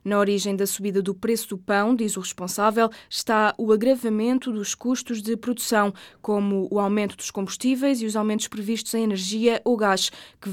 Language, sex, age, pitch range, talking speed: Portuguese, female, 20-39, 200-235 Hz, 185 wpm